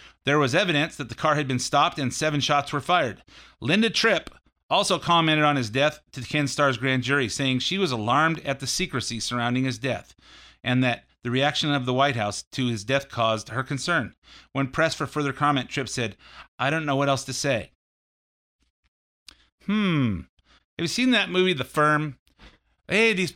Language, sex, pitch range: English, male, 125-185 Hz